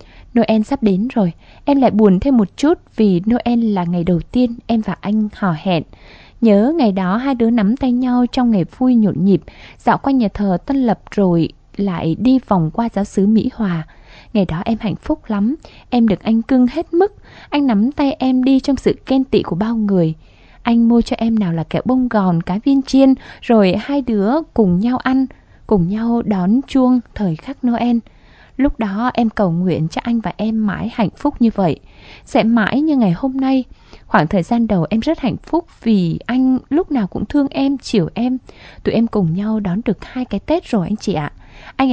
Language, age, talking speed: Vietnamese, 20-39, 215 wpm